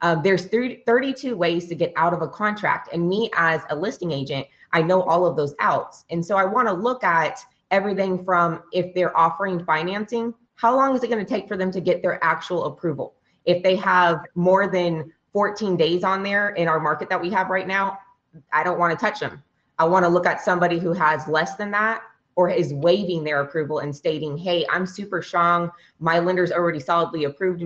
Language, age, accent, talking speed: English, 20-39, American, 205 wpm